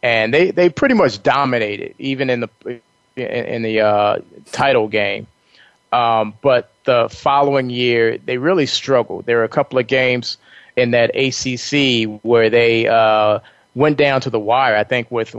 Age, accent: 30-49, American